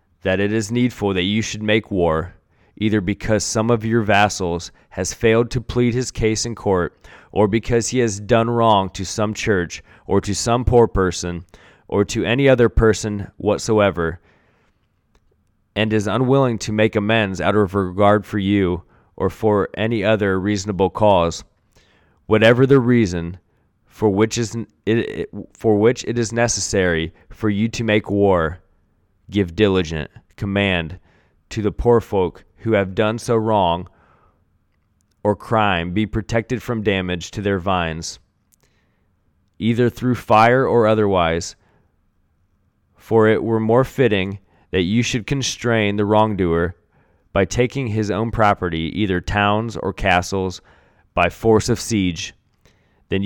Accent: American